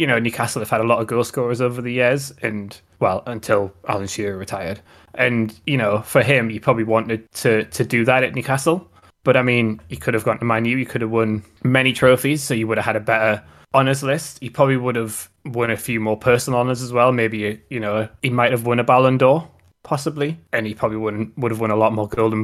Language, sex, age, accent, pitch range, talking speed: English, male, 20-39, British, 110-130 Hz, 245 wpm